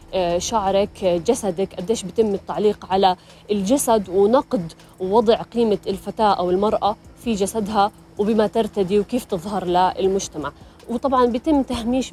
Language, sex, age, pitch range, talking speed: Arabic, female, 30-49, 195-235 Hz, 115 wpm